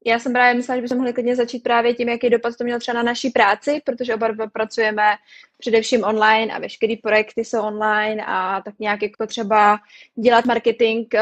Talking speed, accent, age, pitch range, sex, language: 195 wpm, native, 20-39, 210-230 Hz, female, Czech